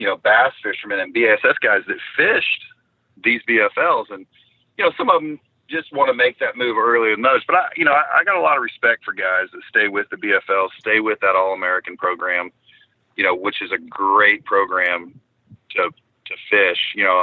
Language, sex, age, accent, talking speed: English, male, 40-59, American, 210 wpm